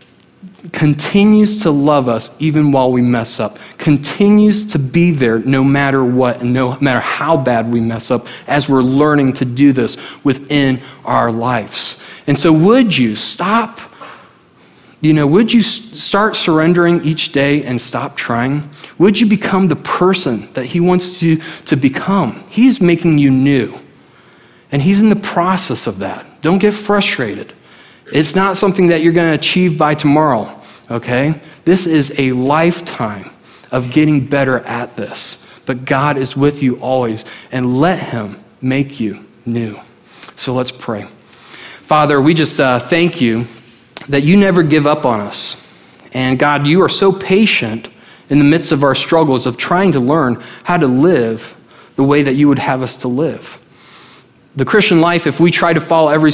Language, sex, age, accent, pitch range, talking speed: English, male, 40-59, American, 125-170 Hz, 170 wpm